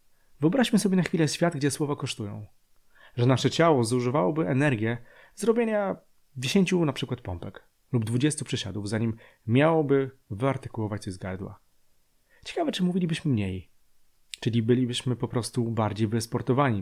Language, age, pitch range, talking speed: Polish, 30-49, 105-140 Hz, 130 wpm